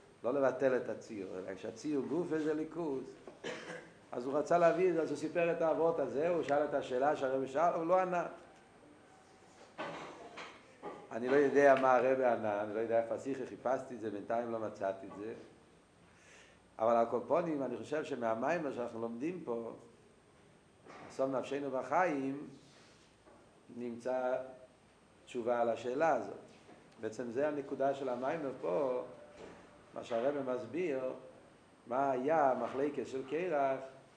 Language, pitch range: Hebrew, 115-150 Hz